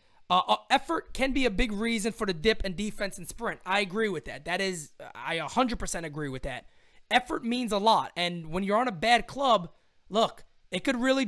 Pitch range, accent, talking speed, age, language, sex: 185-265 Hz, American, 215 wpm, 20-39, English, male